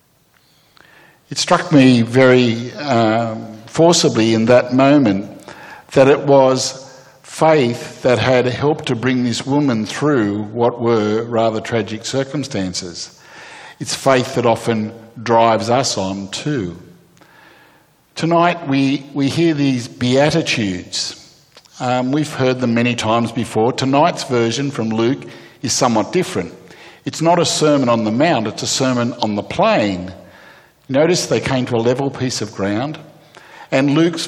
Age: 60-79